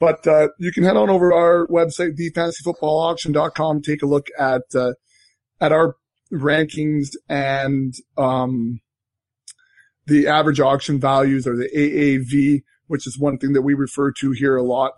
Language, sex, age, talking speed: English, male, 20-39, 155 wpm